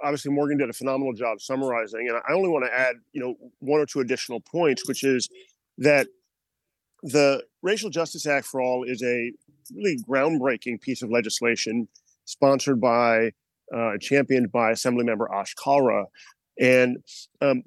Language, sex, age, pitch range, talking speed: English, male, 40-59, 115-140 Hz, 155 wpm